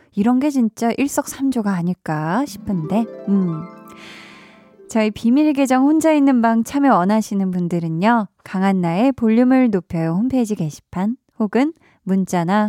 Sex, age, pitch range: female, 20-39, 185-255 Hz